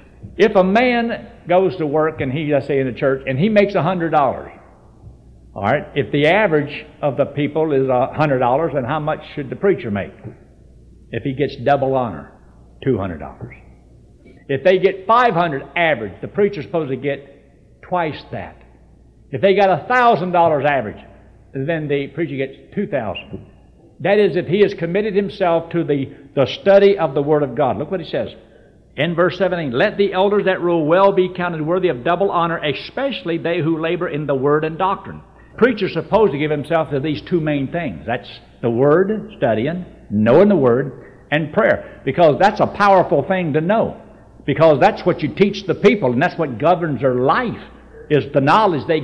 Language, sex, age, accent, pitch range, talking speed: English, male, 60-79, American, 140-185 Hz, 185 wpm